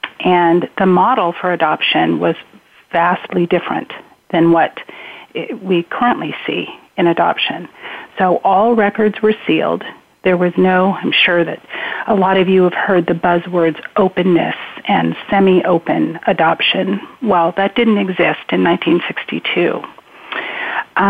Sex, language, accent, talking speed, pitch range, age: female, English, American, 125 wpm, 175-205 Hz, 40-59